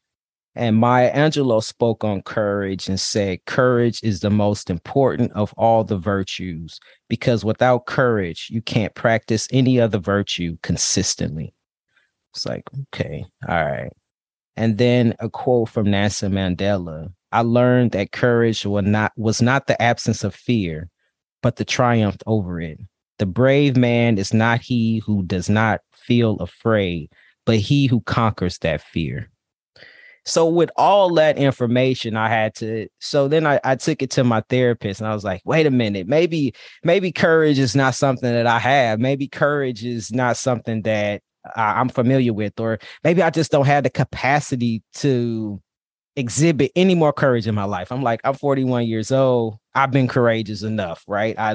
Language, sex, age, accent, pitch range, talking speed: English, male, 30-49, American, 105-130 Hz, 165 wpm